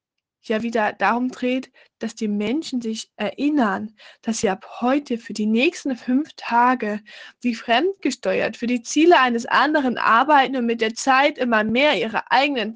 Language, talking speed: German, 160 wpm